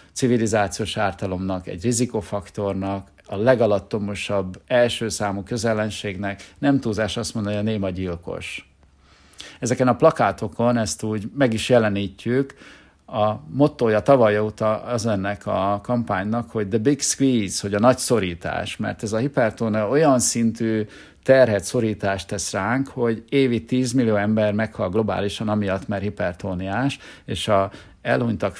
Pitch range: 100-120 Hz